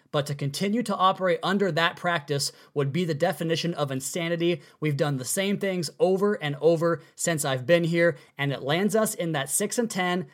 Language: English